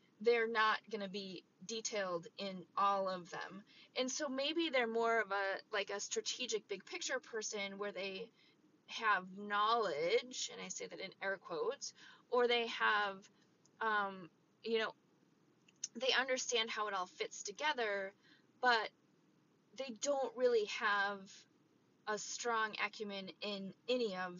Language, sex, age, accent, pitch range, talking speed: English, female, 20-39, American, 190-245 Hz, 140 wpm